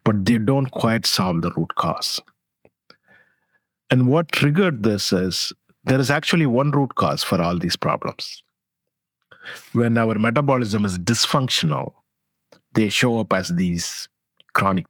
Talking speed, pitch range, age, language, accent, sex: 135 wpm, 100-135 Hz, 50-69, English, Indian, male